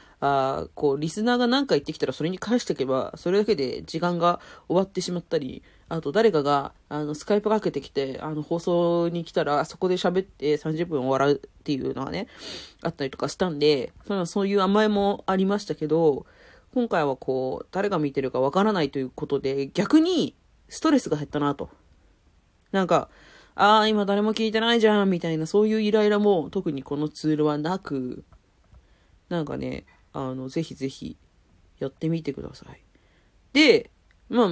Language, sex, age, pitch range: Japanese, female, 30-49, 140-195 Hz